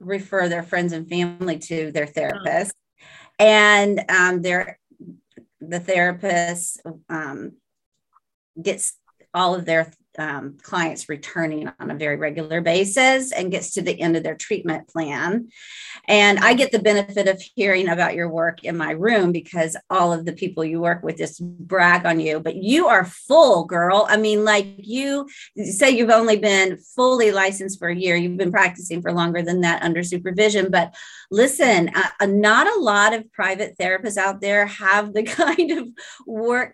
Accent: American